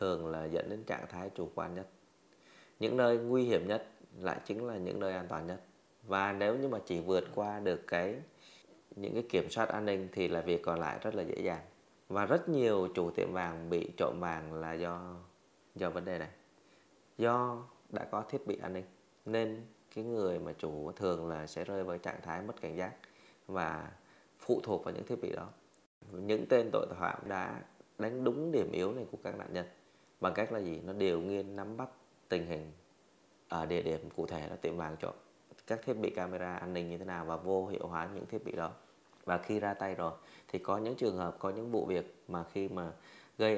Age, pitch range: 20-39, 85-105 Hz